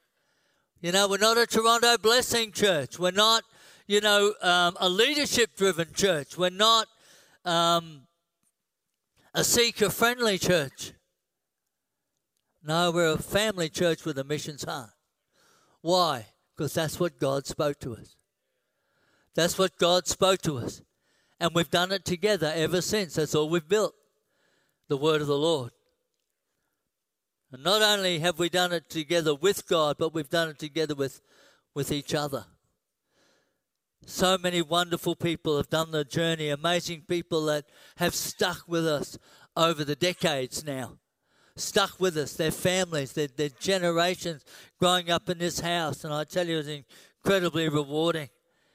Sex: male